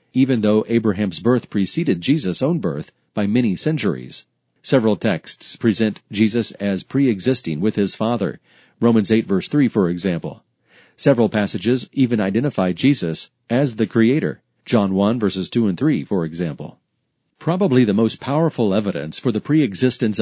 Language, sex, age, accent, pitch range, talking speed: English, male, 40-59, American, 105-130 Hz, 150 wpm